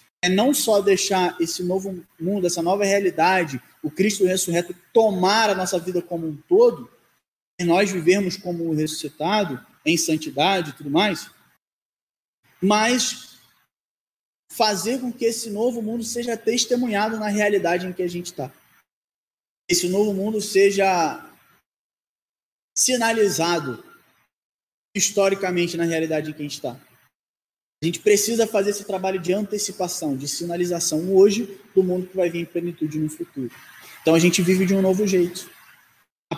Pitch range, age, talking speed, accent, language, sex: 165-200 Hz, 20-39, 145 wpm, Brazilian, Portuguese, male